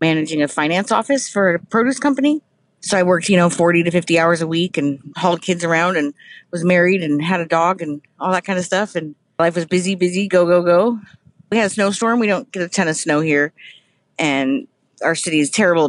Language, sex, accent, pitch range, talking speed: English, female, American, 160-190 Hz, 230 wpm